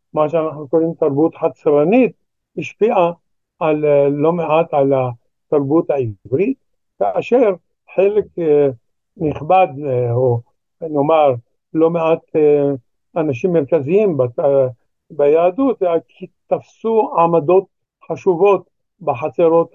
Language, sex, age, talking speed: Hebrew, male, 60-79, 80 wpm